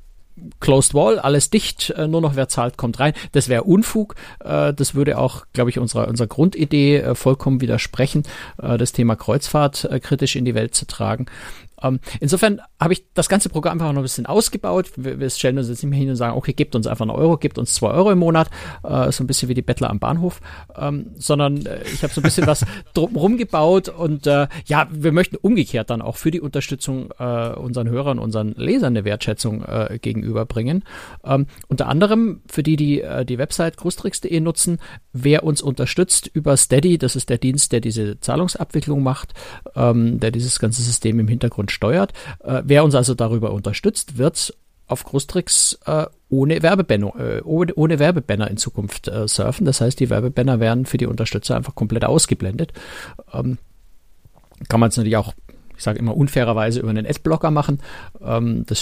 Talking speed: 170 wpm